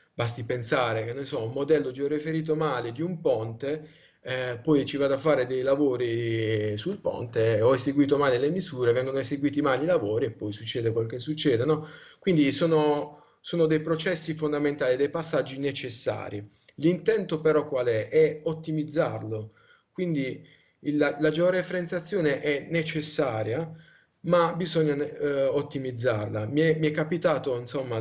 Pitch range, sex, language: 115-155 Hz, male, Italian